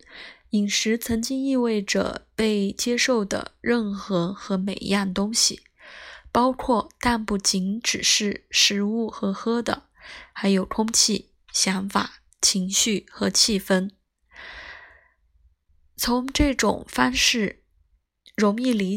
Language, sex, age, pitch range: Chinese, female, 20-39, 195-235 Hz